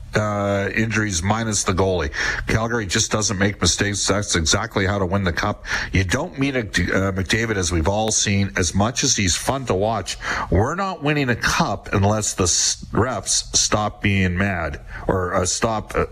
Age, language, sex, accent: 50-69, English, male, American